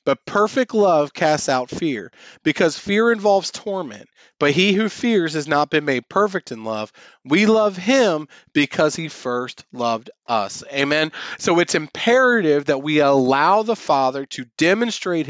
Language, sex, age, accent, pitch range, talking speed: English, male, 30-49, American, 125-175 Hz, 155 wpm